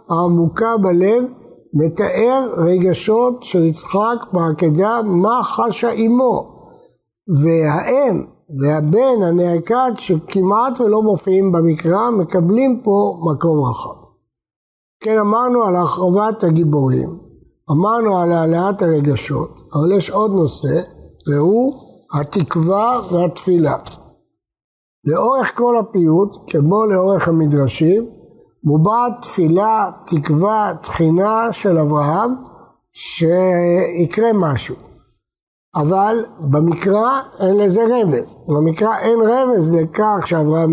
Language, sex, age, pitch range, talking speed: Hebrew, male, 60-79, 160-220 Hz, 90 wpm